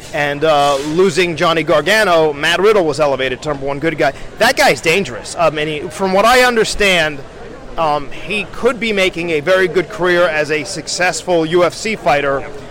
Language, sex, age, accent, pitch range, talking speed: English, male, 30-49, American, 155-190 Hz, 170 wpm